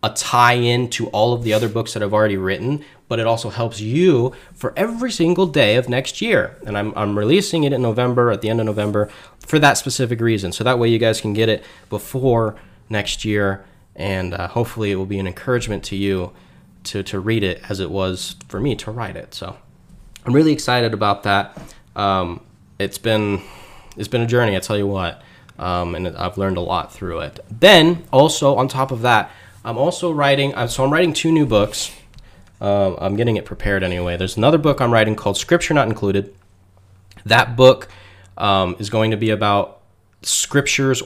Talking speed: 200 wpm